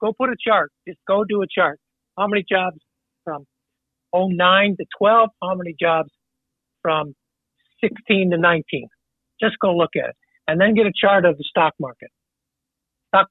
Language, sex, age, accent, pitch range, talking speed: English, male, 60-79, American, 160-205 Hz, 170 wpm